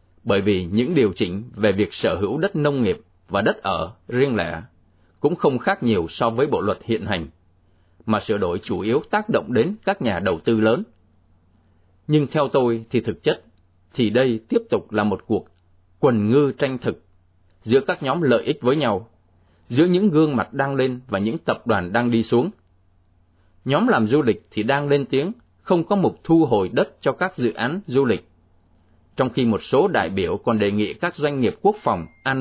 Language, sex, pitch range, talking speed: Vietnamese, male, 90-135 Hz, 205 wpm